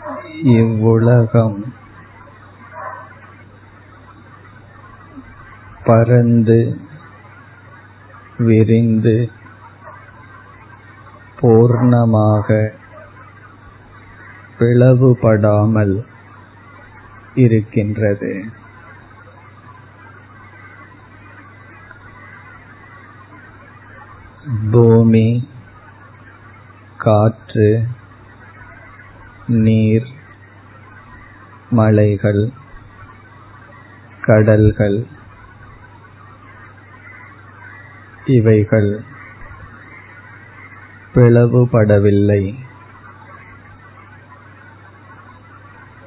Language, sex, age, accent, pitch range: Tamil, male, 50-69, native, 105-115 Hz